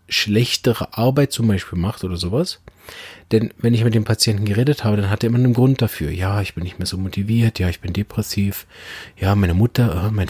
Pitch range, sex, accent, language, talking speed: 95-115 Hz, male, German, German, 220 wpm